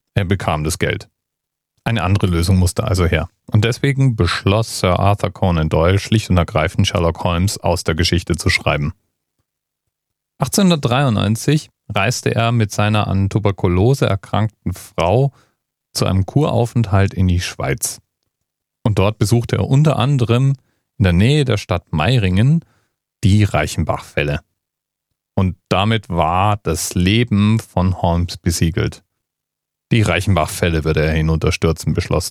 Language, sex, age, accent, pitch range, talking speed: German, male, 40-59, German, 90-115 Hz, 130 wpm